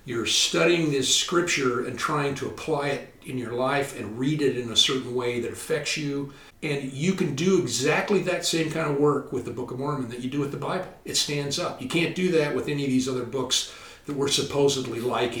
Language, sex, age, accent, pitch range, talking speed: English, male, 50-69, American, 115-145 Hz, 235 wpm